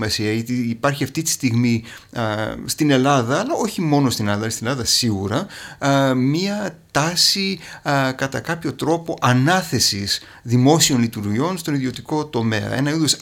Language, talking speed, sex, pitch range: Greek, 125 wpm, male, 115-150 Hz